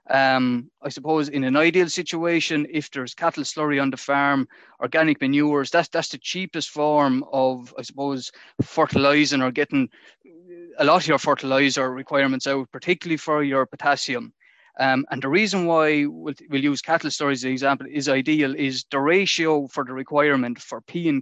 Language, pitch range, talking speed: English, 130-155 Hz, 175 wpm